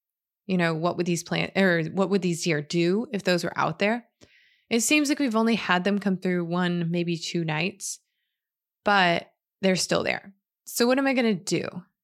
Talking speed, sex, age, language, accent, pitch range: 205 wpm, female, 20-39, English, American, 170-210 Hz